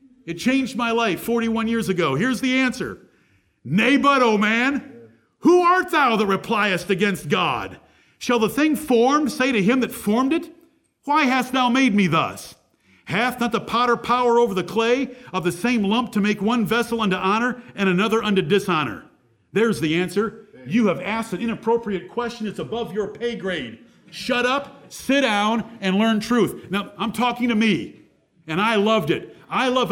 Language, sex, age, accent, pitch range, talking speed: English, male, 50-69, American, 185-240 Hz, 185 wpm